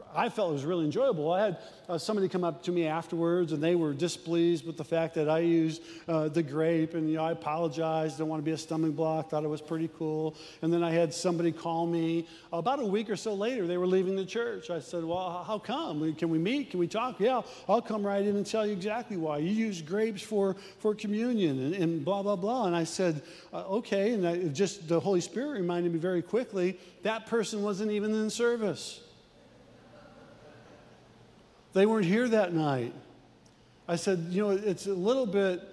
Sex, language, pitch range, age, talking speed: male, English, 165-205 Hz, 50-69, 220 wpm